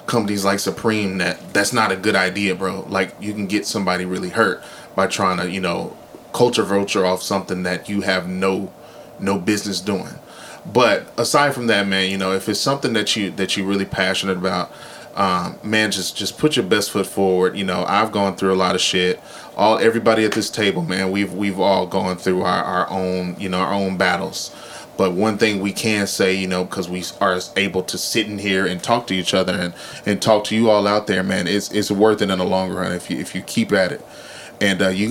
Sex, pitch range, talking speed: male, 95-105 Hz, 230 wpm